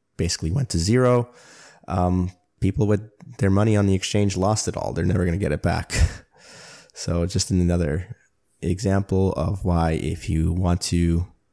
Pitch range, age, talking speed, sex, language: 85-105 Hz, 20-39, 170 wpm, male, English